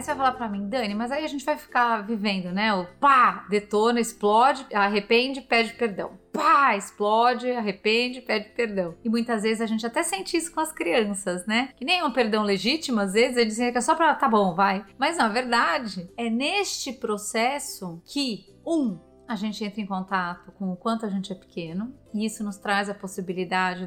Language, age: Portuguese, 30-49